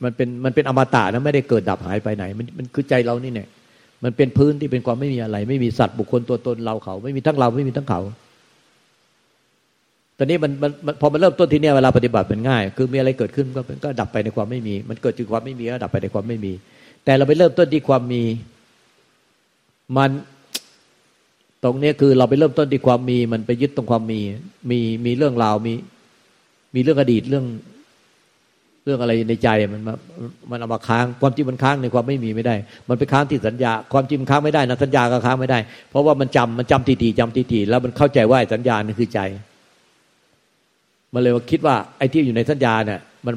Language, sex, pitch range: Thai, male, 115-140 Hz